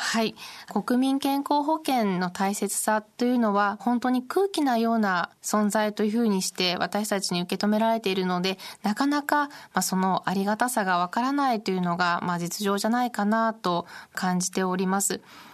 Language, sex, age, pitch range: Japanese, female, 20-39, 190-240 Hz